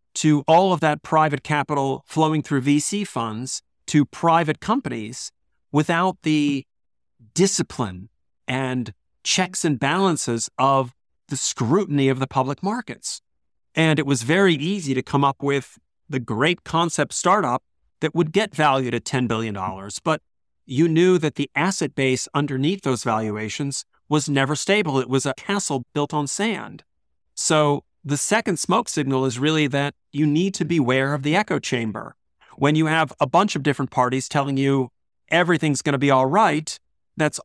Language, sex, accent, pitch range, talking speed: English, male, American, 130-160 Hz, 160 wpm